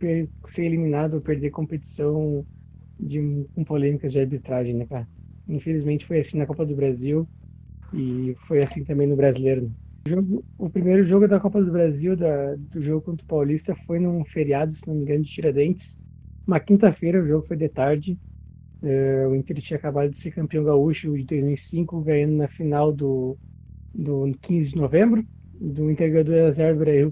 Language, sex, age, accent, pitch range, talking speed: Portuguese, male, 20-39, Brazilian, 145-175 Hz, 175 wpm